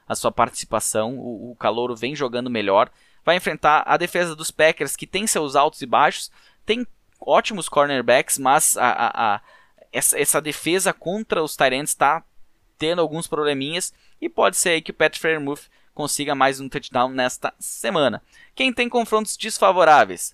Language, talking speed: Portuguese, 165 wpm